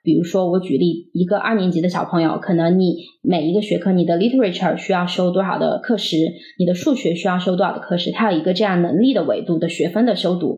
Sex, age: female, 20-39